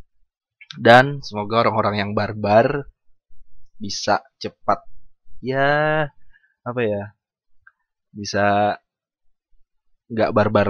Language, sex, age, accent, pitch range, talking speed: Indonesian, male, 20-39, native, 100-120 Hz, 75 wpm